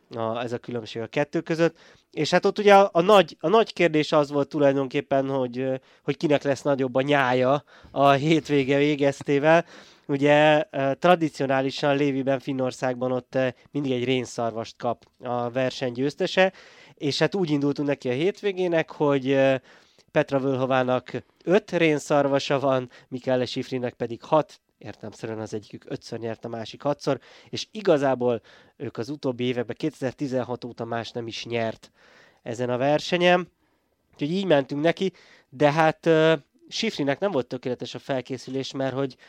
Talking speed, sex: 145 wpm, male